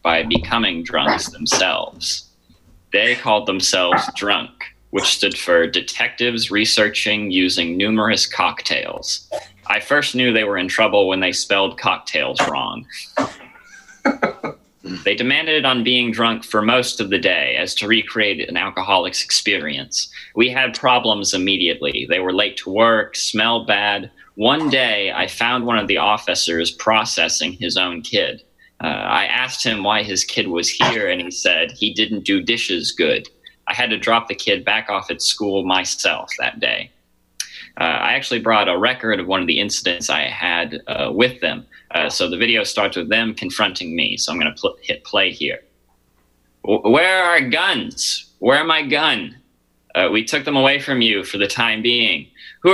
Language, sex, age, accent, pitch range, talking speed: English, male, 30-49, American, 95-120 Hz, 170 wpm